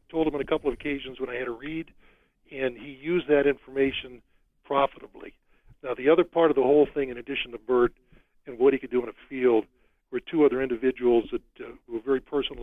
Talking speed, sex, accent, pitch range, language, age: 225 wpm, male, American, 125-150 Hz, English, 50-69